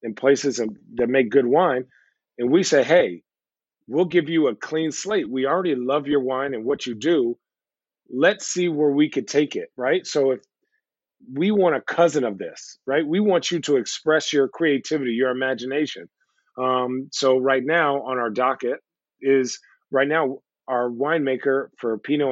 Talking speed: 175 wpm